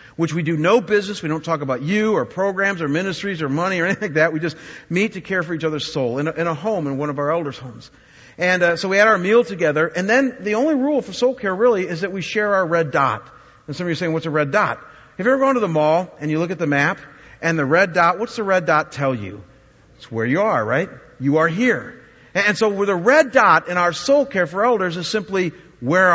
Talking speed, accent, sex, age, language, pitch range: 280 wpm, American, male, 50-69, English, 150-200 Hz